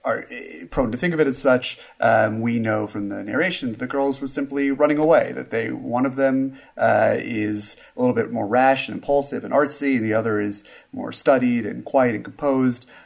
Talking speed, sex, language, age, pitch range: 215 wpm, male, English, 30-49, 105-135 Hz